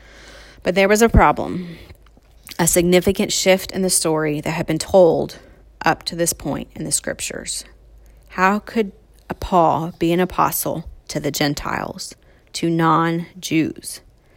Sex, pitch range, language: female, 165-210 Hz, English